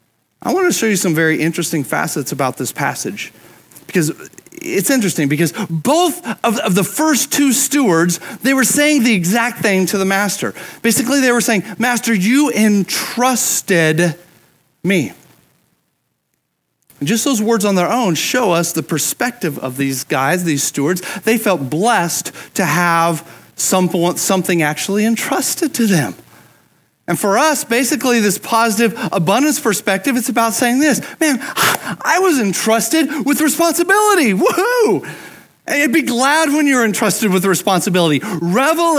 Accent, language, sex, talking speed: American, English, male, 145 wpm